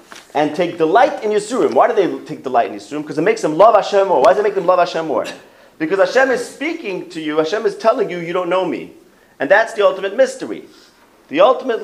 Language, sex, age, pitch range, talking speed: English, male, 30-49, 125-190 Hz, 255 wpm